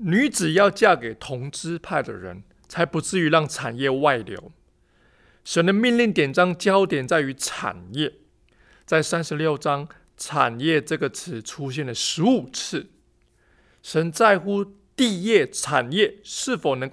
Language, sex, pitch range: Chinese, male, 130-185 Hz